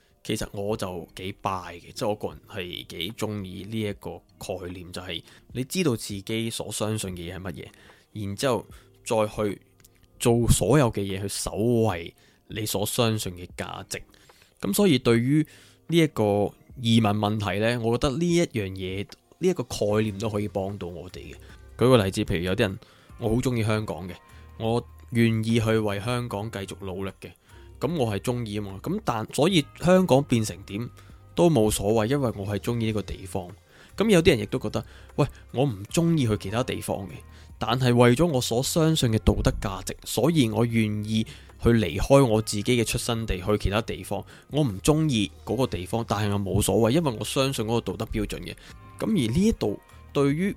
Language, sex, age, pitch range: Chinese, male, 20-39, 95-120 Hz